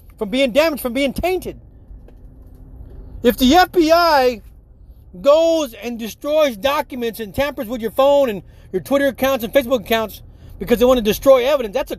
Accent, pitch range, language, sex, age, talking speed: American, 205-285 Hz, English, male, 30-49, 165 wpm